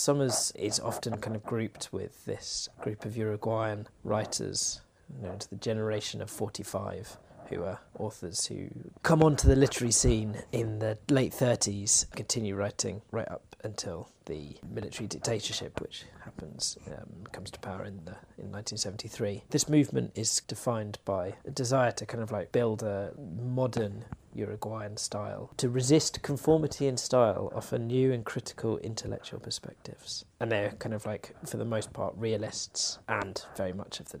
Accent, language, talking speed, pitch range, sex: British, English, 160 wpm, 105-125 Hz, male